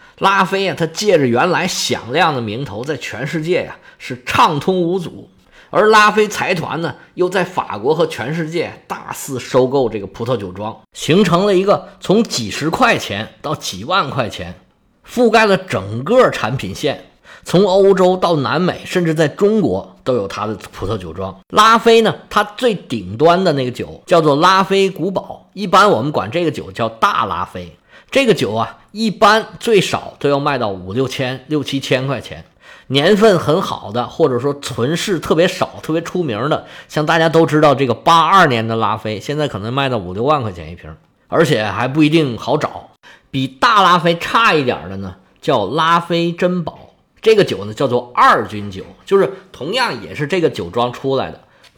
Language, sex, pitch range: Chinese, male, 120-185 Hz